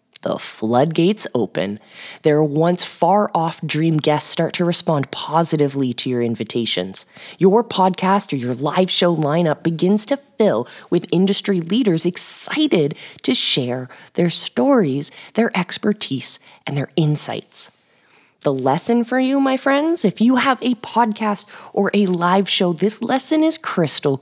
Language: English